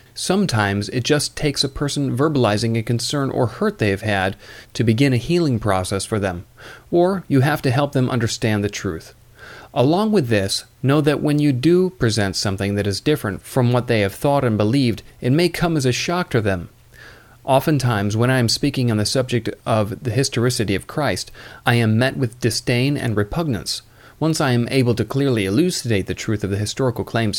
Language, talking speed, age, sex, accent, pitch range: English, 200 wpm, 40-59, male, American, 105-140 Hz